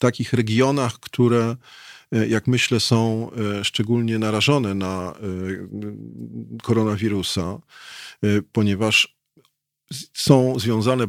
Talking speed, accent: 75 wpm, native